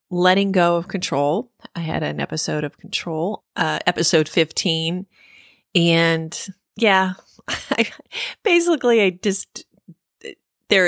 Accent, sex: American, female